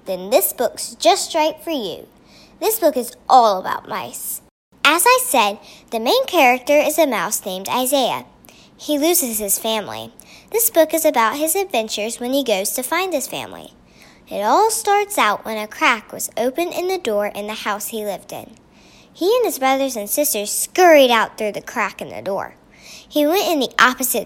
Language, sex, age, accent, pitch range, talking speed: English, male, 10-29, American, 215-310 Hz, 195 wpm